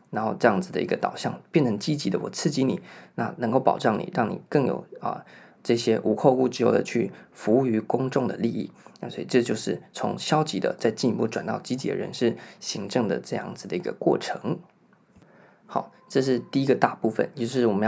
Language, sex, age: Chinese, male, 20-39